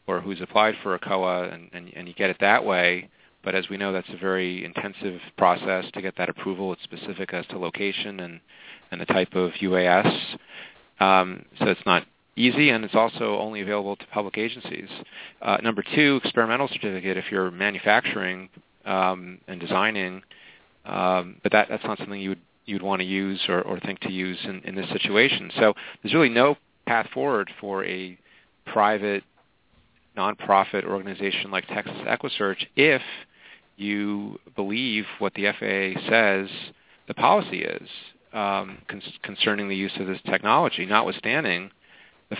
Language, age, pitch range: English, 30-49, 95-105 Hz